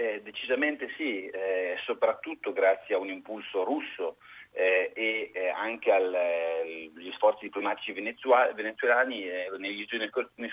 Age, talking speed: 30-49, 85 wpm